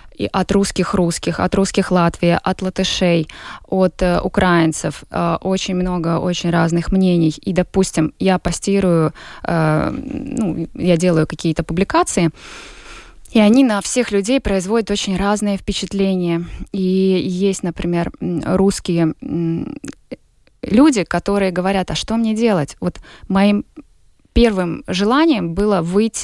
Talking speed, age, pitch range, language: 130 wpm, 20-39, 170-195 Hz, Russian